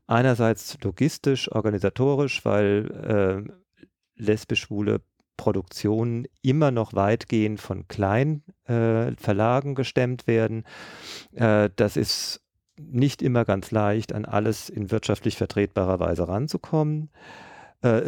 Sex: male